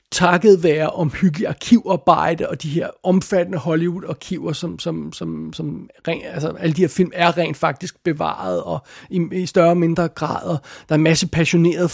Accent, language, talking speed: native, Danish, 180 wpm